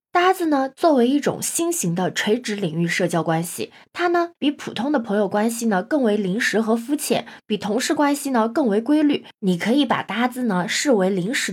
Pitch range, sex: 190-290 Hz, female